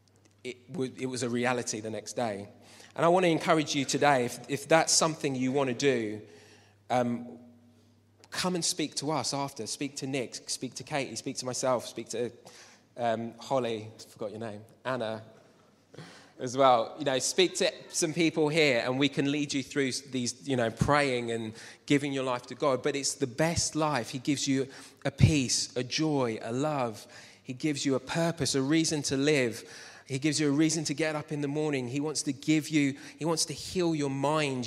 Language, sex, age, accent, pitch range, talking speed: English, male, 20-39, British, 125-155 Hz, 200 wpm